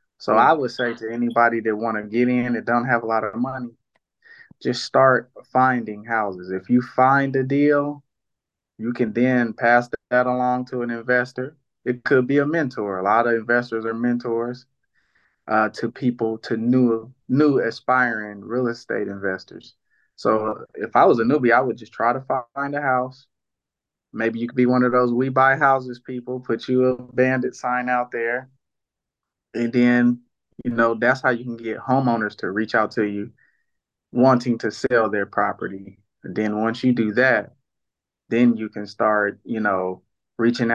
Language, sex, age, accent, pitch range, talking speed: English, male, 20-39, American, 110-125 Hz, 180 wpm